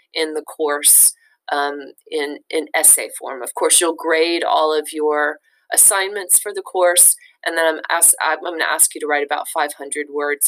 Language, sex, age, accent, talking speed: English, female, 30-49, American, 185 wpm